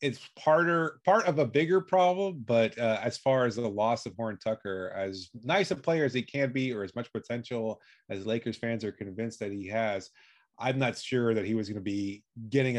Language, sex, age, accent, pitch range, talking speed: English, male, 30-49, American, 110-135 Hz, 215 wpm